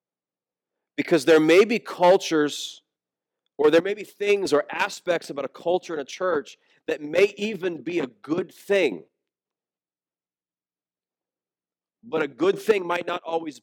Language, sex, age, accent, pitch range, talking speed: English, male, 40-59, American, 130-180 Hz, 140 wpm